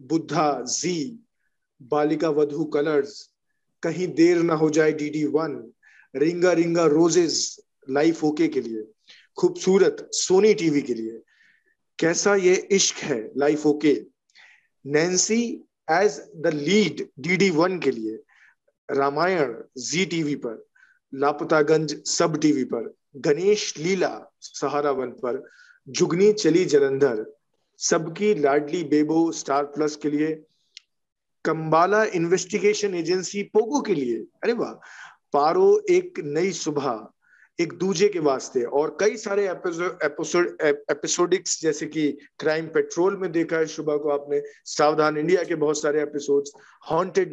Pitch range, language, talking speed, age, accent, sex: 150-210 Hz, Hindi, 120 wpm, 40-59, native, male